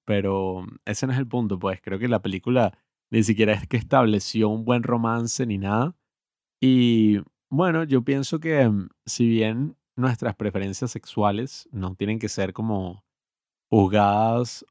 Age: 20-39